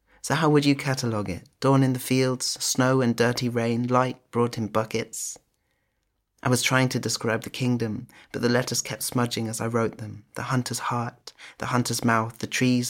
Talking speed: 195 wpm